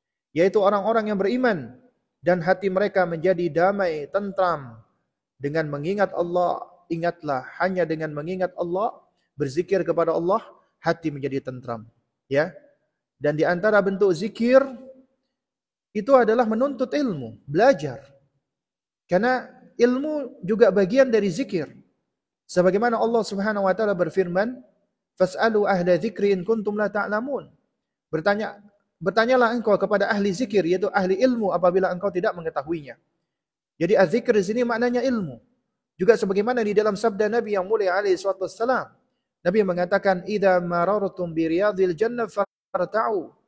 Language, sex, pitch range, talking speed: Indonesian, male, 175-225 Hz, 120 wpm